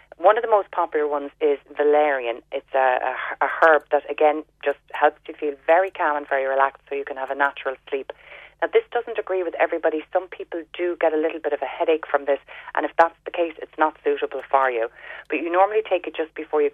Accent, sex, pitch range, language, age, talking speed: Irish, female, 135-165 Hz, English, 30-49, 235 wpm